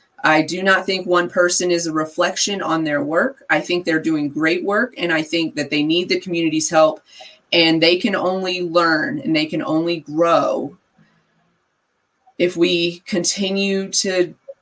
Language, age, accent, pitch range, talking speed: English, 30-49, American, 160-190 Hz, 170 wpm